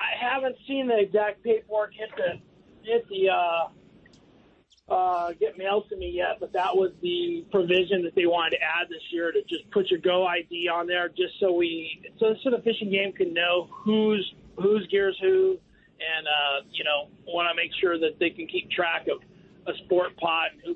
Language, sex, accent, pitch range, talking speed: English, male, American, 170-225 Hz, 200 wpm